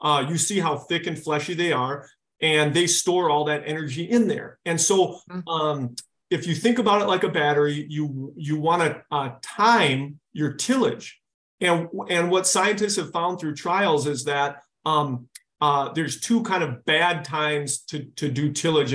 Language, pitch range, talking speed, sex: English, 145-175 Hz, 185 wpm, male